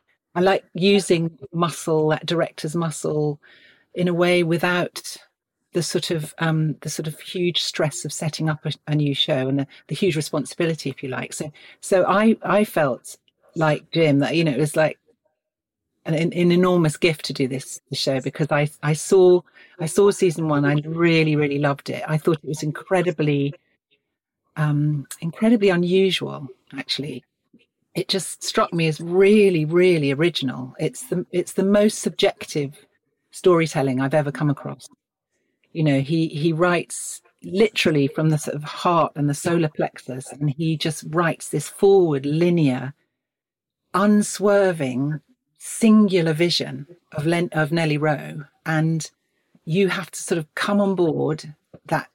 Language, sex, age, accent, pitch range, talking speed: English, female, 40-59, British, 150-180 Hz, 160 wpm